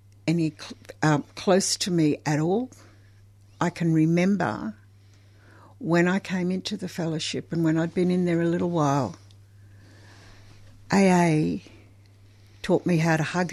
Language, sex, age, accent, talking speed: English, female, 60-79, Australian, 135 wpm